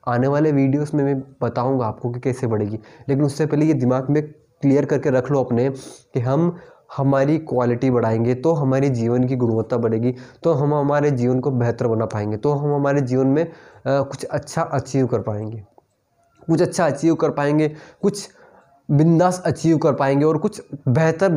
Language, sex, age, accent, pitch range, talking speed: Hindi, male, 20-39, native, 125-150 Hz, 185 wpm